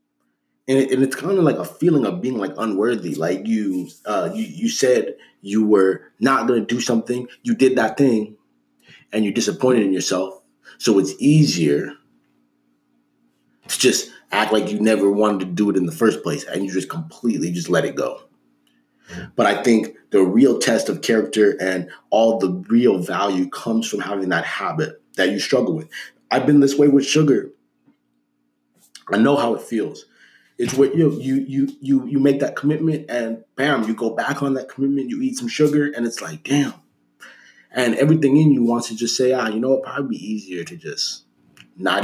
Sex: male